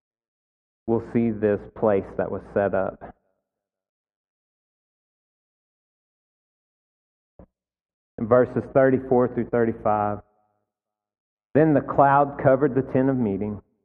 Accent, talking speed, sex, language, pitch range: American, 85 wpm, male, English, 105-125 Hz